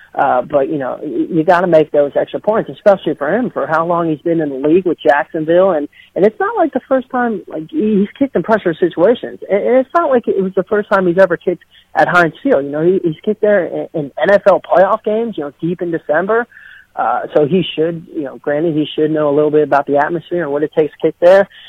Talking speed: 255 wpm